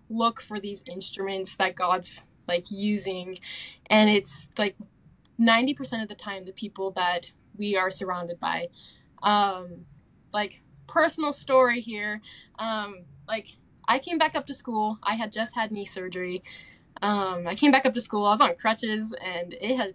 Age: 10-29